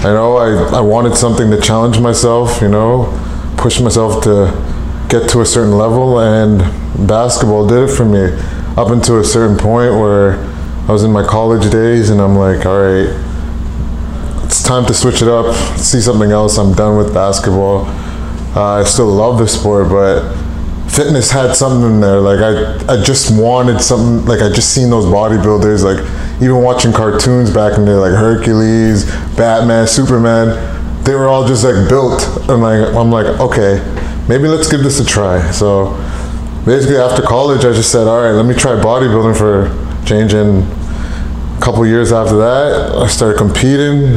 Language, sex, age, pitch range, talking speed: English, male, 20-39, 95-120 Hz, 180 wpm